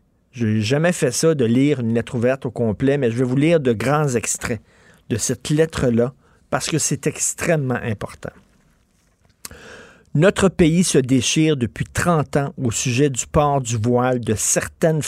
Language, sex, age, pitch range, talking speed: French, male, 50-69, 120-155 Hz, 170 wpm